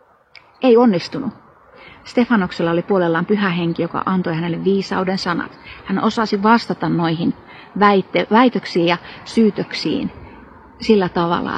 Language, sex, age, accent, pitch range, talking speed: Finnish, female, 30-49, native, 175-225 Hz, 110 wpm